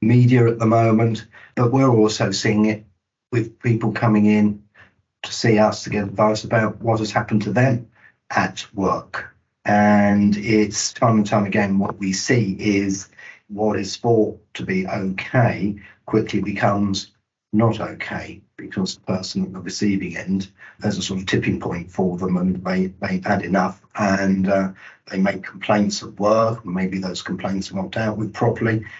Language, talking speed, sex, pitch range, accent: English, 170 wpm, male, 100-115 Hz, British